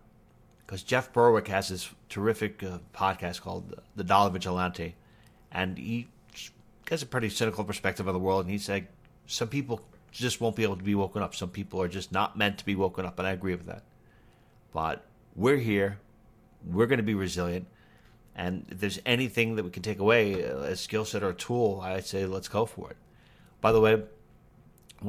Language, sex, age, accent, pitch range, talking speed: English, male, 40-59, American, 95-110 Hz, 205 wpm